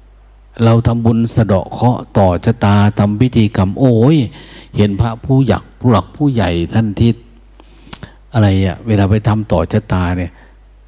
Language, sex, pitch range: Thai, male, 100-130 Hz